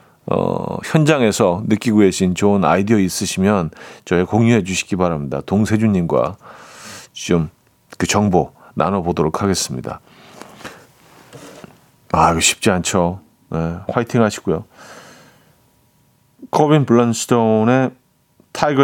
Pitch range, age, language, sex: 100-135 Hz, 40-59, Korean, male